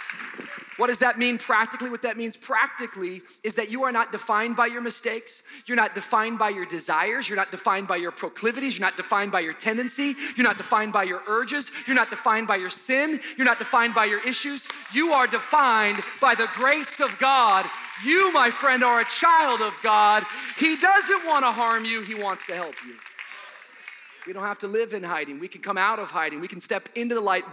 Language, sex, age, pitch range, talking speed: English, male, 30-49, 160-250 Hz, 220 wpm